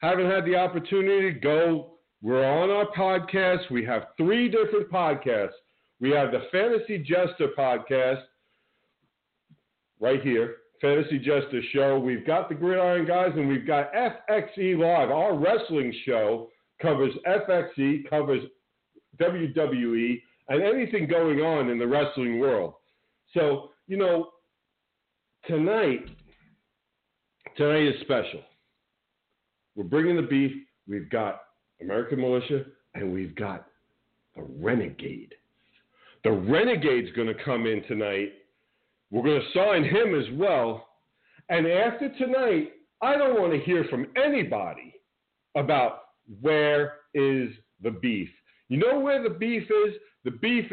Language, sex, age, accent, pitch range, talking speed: English, male, 50-69, American, 135-200 Hz, 130 wpm